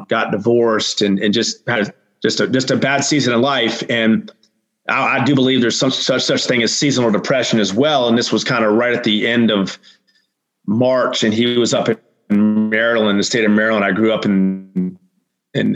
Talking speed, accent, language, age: 210 wpm, American, English, 30-49